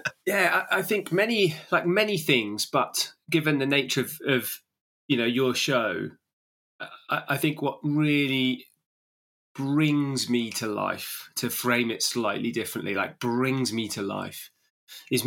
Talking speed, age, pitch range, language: 150 wpm, 20-39, 110-135 Hz, English